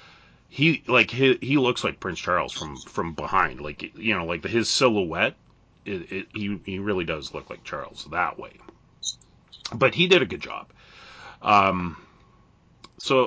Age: 30-49